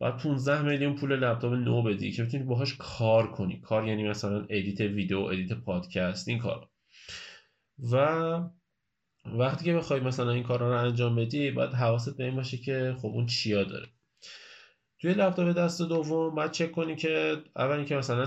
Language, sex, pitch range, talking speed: Persian, male, 100-125 Hz, 165 wpm